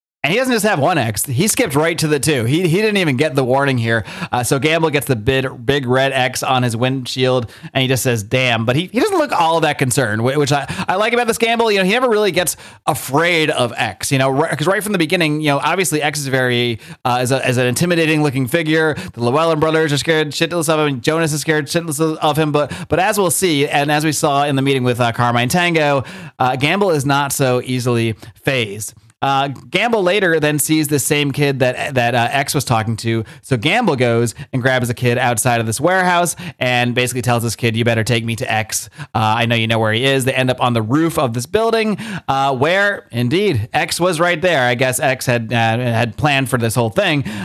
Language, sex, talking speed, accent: English, male, 245 wpm, American